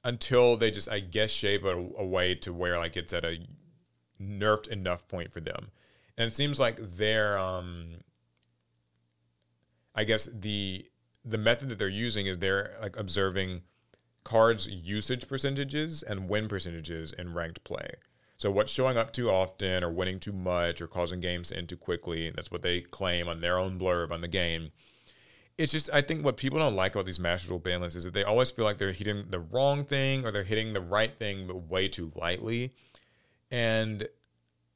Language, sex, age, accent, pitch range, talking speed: English, male, 30-49, American, 90-110 Hz, 190 wpm